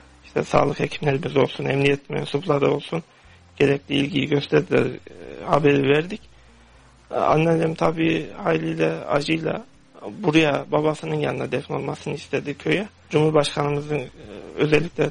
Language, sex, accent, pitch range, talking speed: Turkish, male, native, 135-155 Hz, 95 wpm